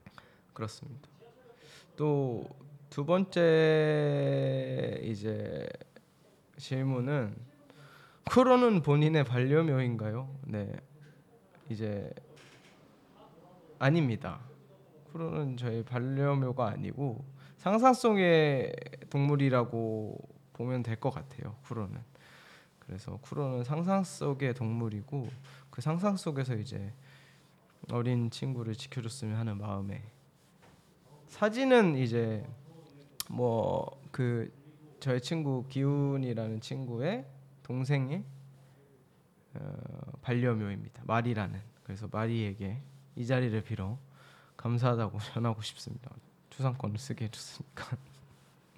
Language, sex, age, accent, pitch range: Korean, male, 20-39, native, 120-150 Hz